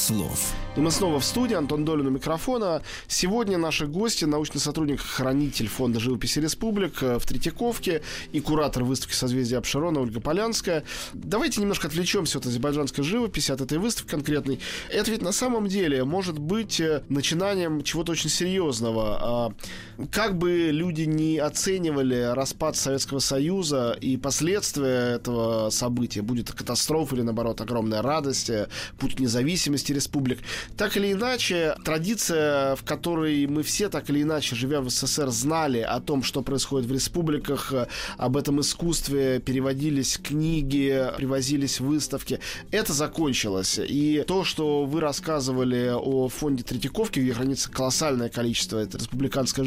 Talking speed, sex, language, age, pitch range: 140 wpm, male, Russian, 20-39, 130-160 Hz